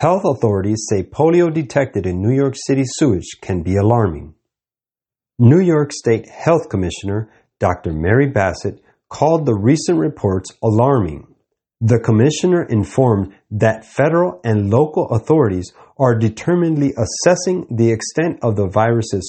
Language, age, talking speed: English, 40-59, 130 wpm